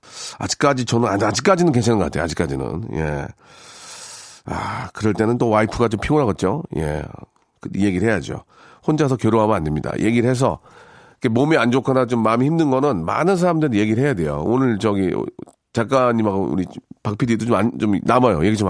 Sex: male